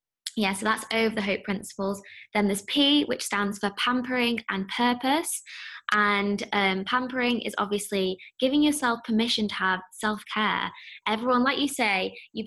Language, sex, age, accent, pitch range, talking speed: English, female, 20-39, British, 195-235 Hz, 155 wpm